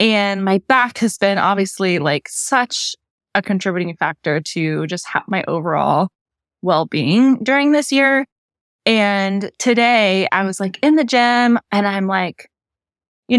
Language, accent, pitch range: English, American, 190-250 Hz